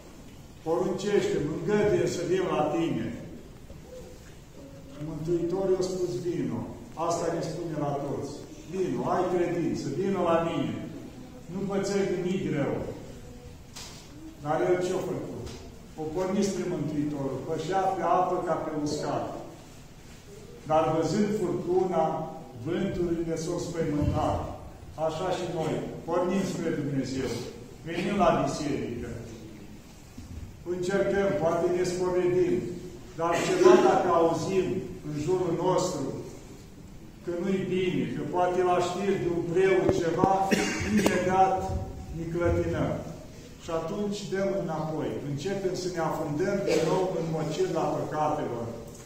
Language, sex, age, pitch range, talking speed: Romanian, male, 50-69, 150-185 Hz, 110 wpm